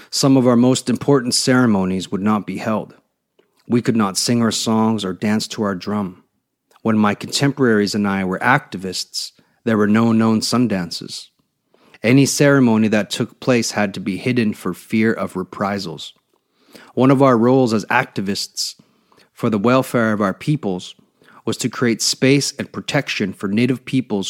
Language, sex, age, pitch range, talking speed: English, male, 40-59, 110-135 Hz, 170 wpm